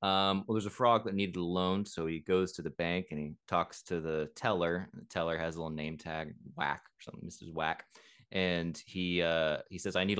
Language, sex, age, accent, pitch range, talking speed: English, male, 20-39, American, 85-100 Hz, 240 wpm